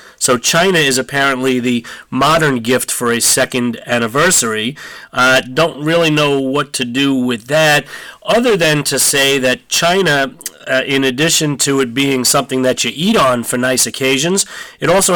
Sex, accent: male, American